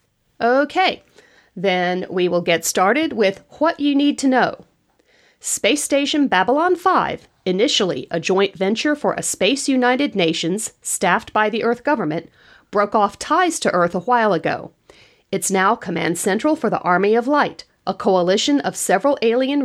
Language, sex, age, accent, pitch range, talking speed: English, female, 40-59, American, 180-270 Hz, 160 wpm